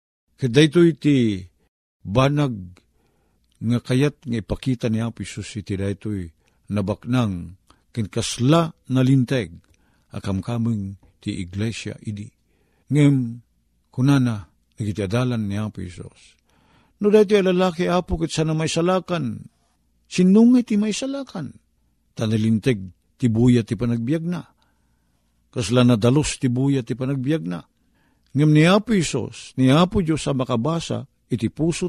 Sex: male